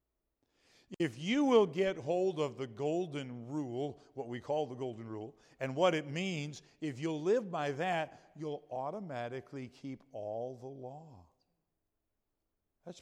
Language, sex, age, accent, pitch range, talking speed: English, male, 50-69, American, 135-170 Hz, 145 wpm